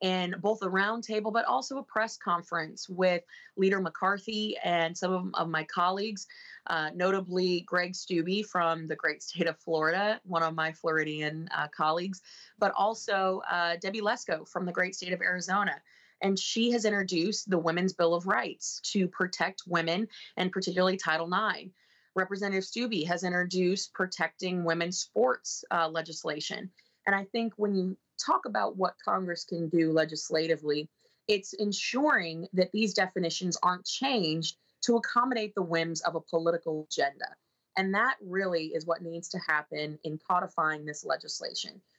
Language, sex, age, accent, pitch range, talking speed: English, female, 20-39, American, 170-210 Hz, 155 wpm